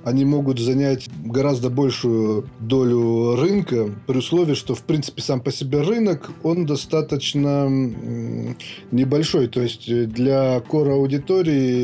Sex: male